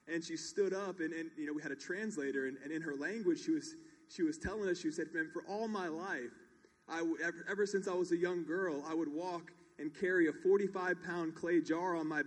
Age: 20-39